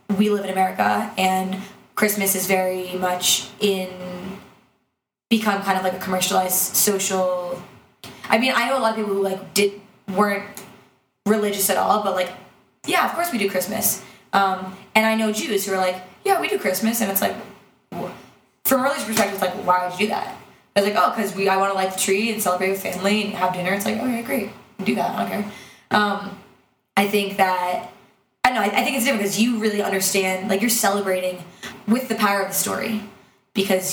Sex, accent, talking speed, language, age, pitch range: female, American, 205 wpm, English, 20-39, 185-205 Hz